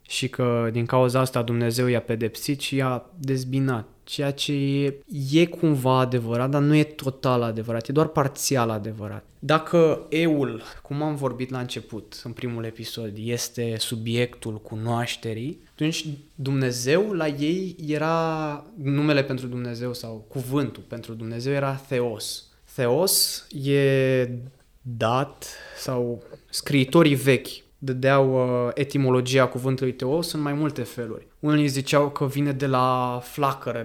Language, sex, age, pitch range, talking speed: English, male, 20-39, 120-140 Hz, 130 wpm